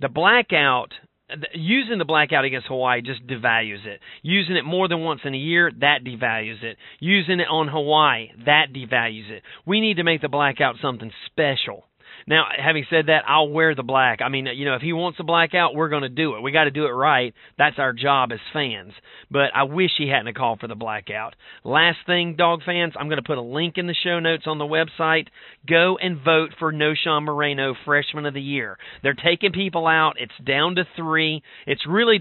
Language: English